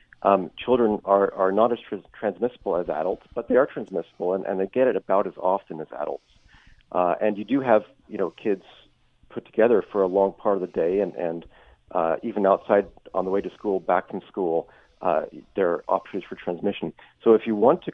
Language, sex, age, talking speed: English, male, 40-59, 215 wpm